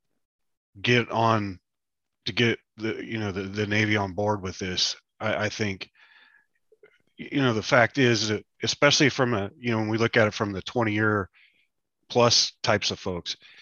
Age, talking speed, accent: 30-49, 180 wpm, American